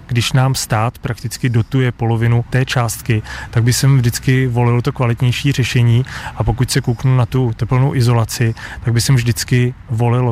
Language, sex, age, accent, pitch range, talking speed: Czech, male, 30-49, native, 110-120 Hz, 170 wpm